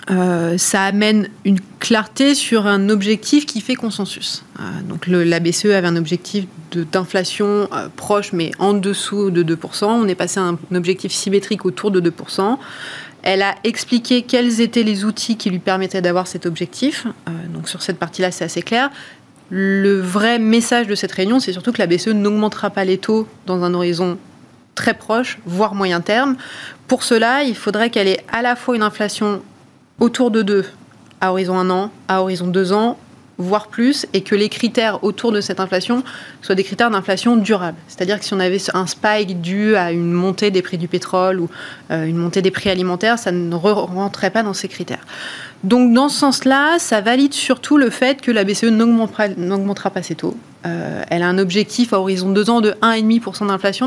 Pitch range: 185-225 Hz